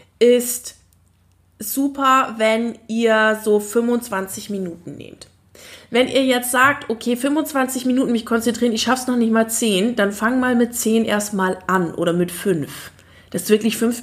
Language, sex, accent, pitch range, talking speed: German, female, German, 210-260 Hz, 160 wpm